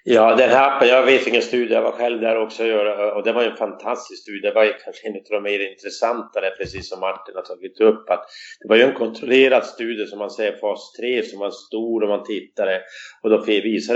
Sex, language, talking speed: male, Swedish, 230 wpm